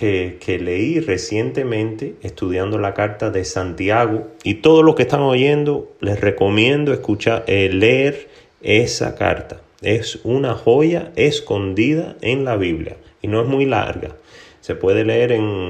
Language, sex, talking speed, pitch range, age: Spanish, male, 145 wpm, 85-115 Hz, 30-49